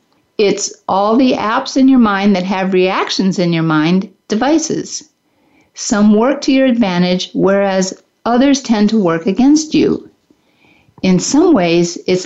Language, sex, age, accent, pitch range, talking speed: English, female, 50-69, American, 190-270 Hz, 145 wpm